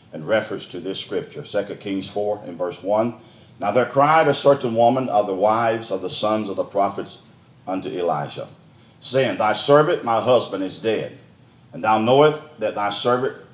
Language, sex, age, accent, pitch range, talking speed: English, male, 50-69, American, 115-150 Hz, 180 wpm